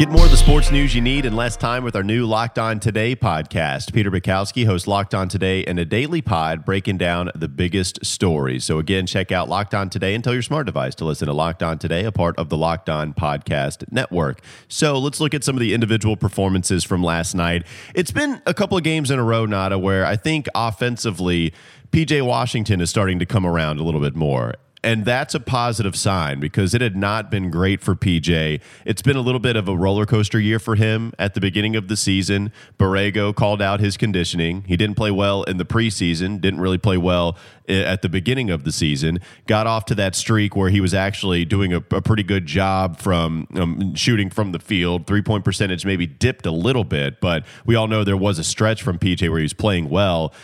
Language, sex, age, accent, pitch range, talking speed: English, male, 30-49, American, 90-115 Hz, 230 wpm